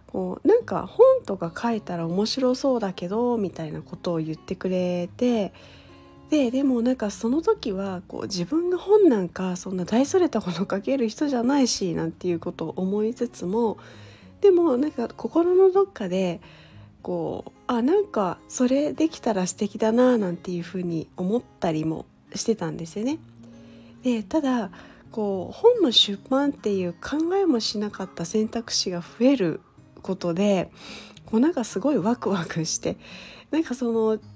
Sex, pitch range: female, 185-265 Hz